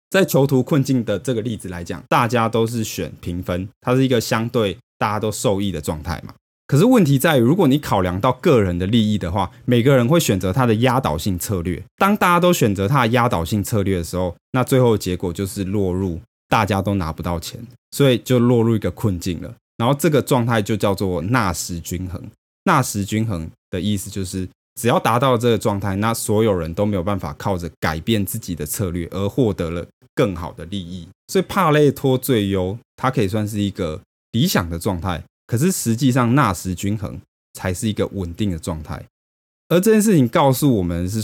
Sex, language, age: male, Chinese, 20-39